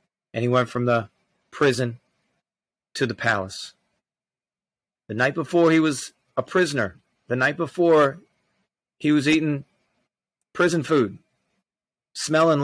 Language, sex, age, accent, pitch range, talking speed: English, male, 40-59, American, 120-145 Hz, 120 wpm